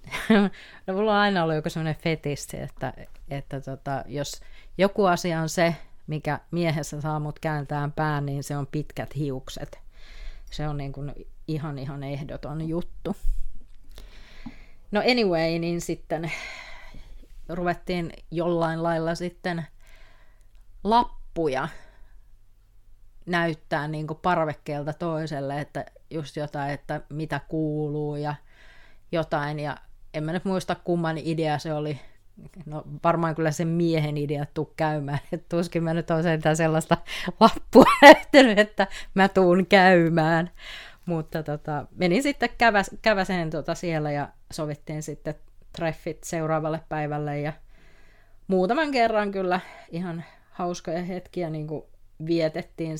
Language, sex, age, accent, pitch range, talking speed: Finnish, female, 30-49, native, 145-175 Hz, 120 wpm